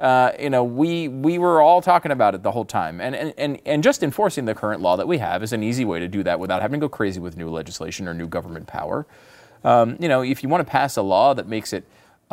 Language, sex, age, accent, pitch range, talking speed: English, male, 30-49, American, 95-145 Hz, 280 wpm